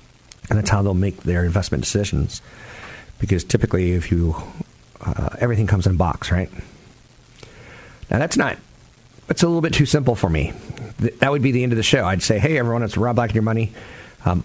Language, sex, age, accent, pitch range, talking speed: English, male, 50-69, American, 95-130 Hz, 205 wpm